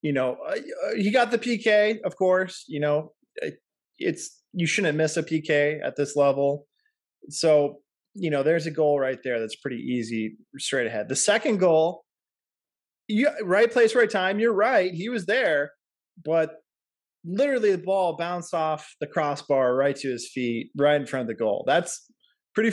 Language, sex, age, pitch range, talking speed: English, male, 20-39, 150-210 Hz, 175 wpm